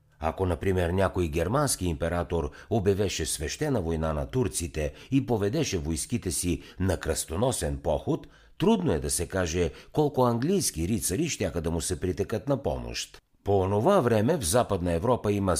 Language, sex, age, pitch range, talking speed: Bulgarian, male, 60-79, 85-125 Hz, 150 wpm